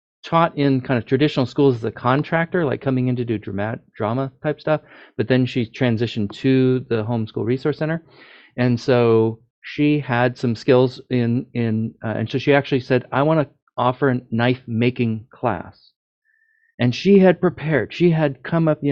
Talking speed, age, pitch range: 185 wpm, 40-59, 125-165 Hz